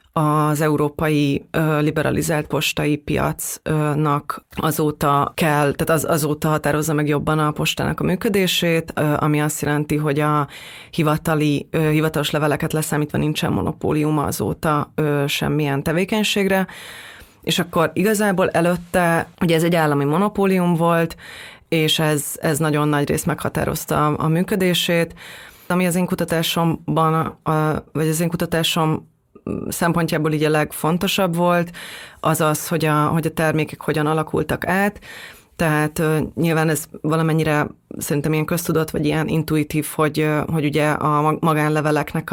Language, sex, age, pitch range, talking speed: Hungarian, female, 30-49, 150-165 Hz, 125 wpm